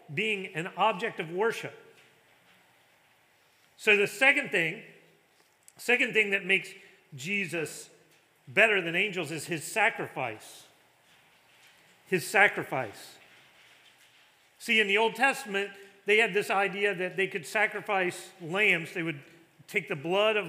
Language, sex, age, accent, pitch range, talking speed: English, male, 40-59, American, 170-210 Hz, 125 wpm